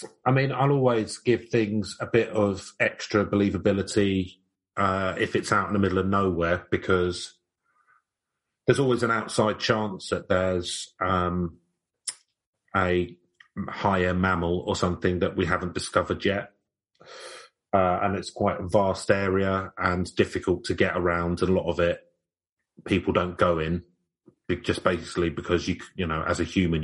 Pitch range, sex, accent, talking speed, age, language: 90-115 Hz, male, British, 155 wpm, 30-49, English